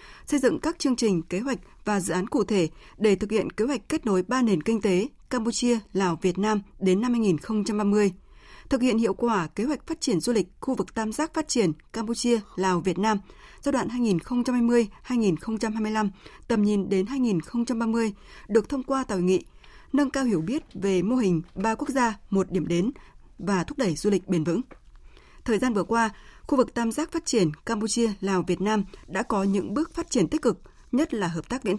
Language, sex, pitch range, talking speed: Vietnamese, female, 190-250 Hz, 210 wpm